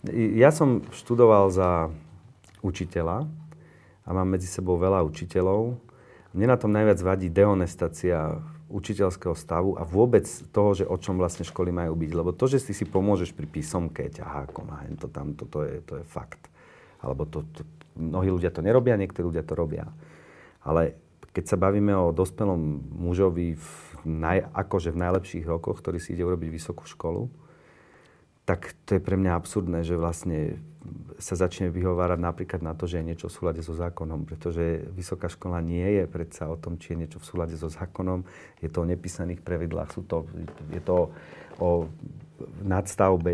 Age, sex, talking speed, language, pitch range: 40-59, male, 170 wpm, Slovak, 85-95 Hz